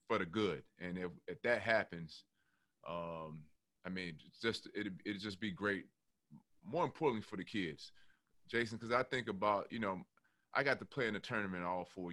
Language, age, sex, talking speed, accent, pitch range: English, 30-49, male, 195 wpm, American, 90-105 Hz